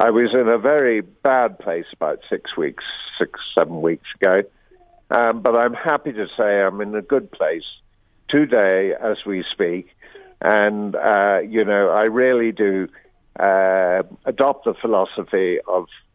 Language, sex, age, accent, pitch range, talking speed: English, male, 50-69, British, 105-130 Hz, 150 wpm